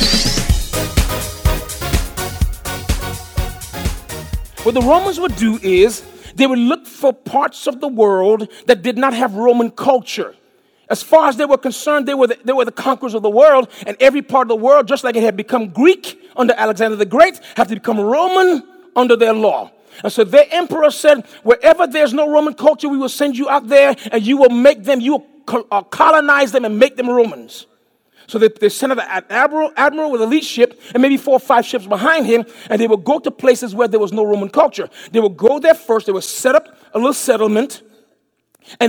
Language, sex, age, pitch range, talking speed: English, male, 40-59, 215-285 Hz, 205 wpm